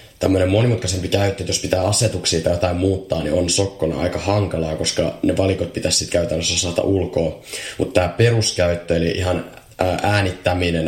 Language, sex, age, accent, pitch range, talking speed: Finnish, male, 20-39, native, 80-95 Hz, 160 wpm